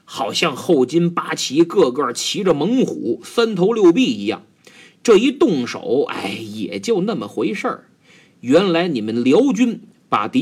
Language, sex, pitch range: Chinese, male, 170-260 Hz